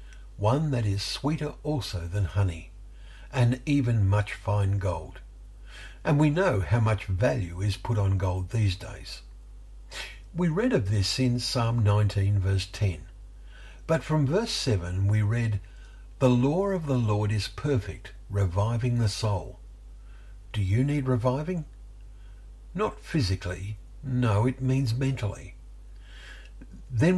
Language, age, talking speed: English, 60-79, 130 wpm